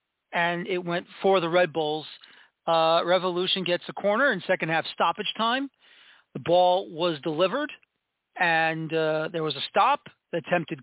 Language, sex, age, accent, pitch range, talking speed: English, male, 40-59, American, 175-210 Hz, 155 wpm